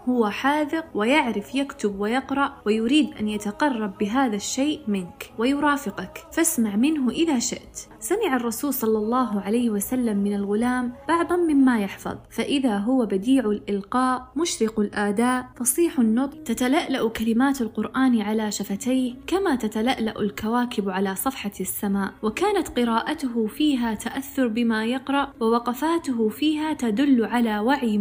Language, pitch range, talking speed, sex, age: Arabic, 215-280 Hz, 120 wpm, female, 20-39